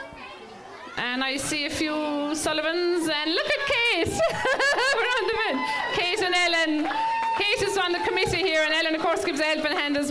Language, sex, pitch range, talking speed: English, female, 290-355 Hz, 190 wpm